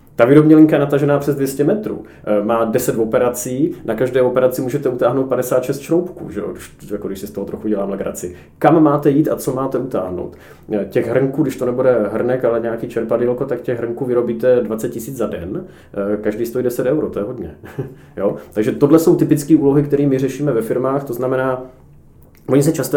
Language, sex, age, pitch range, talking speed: Czech, male, 30-49, 115-145 Hz, 195 wpm